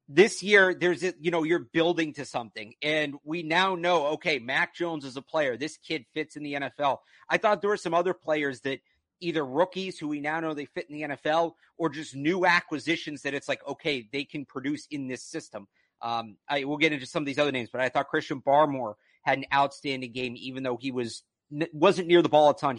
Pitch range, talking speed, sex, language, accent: 140-175 Hz, 230 wpm, male, English, American